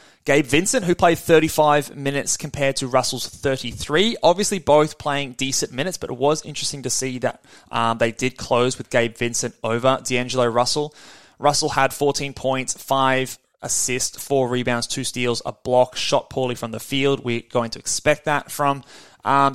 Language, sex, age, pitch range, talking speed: English, male, 20-39, 120-150 Hz, 170 wpm